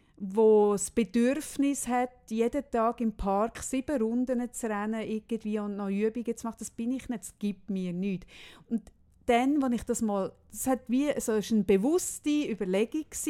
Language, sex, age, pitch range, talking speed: German, female, 30-49, 205-250 Hz, 185 wpm